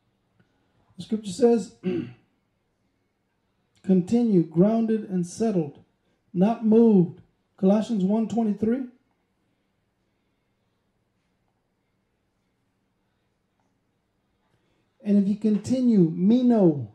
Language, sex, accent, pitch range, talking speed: English, male, American, 175-225 Hz, 65 wpm